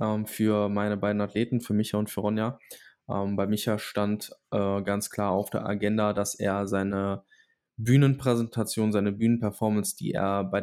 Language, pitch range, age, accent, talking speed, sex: German, 100-115 Hz, 10-29, German, 145 wpm, male